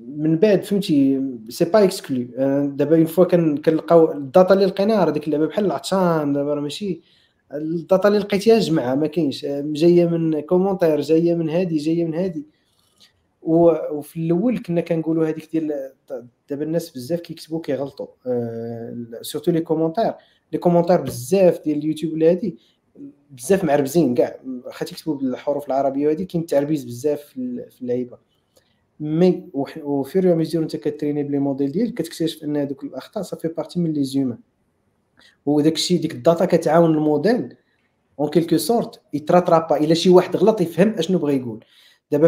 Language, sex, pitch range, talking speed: Arabic, male, 145-170 Hz, 155 wpm